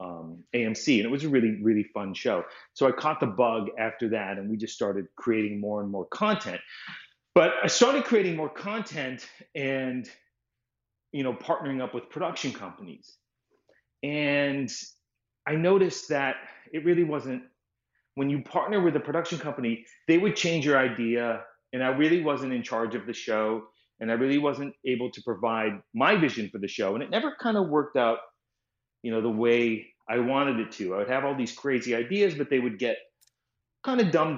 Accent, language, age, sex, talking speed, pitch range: American, English, 30-49, male, 190 wpm, 110-145 Hz